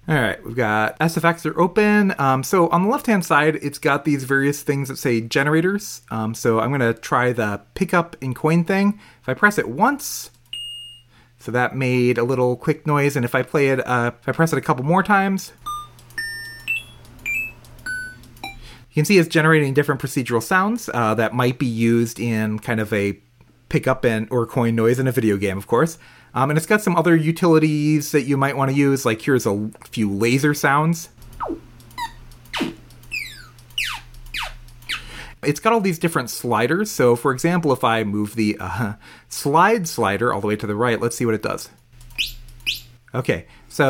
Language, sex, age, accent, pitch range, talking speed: English, male, 30-49, American, 120-160 Hz, 180 wpm